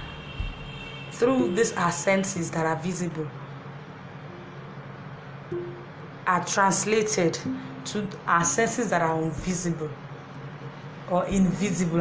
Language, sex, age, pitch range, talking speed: English, female, 20-39, 165-200 Hz, 85 wpm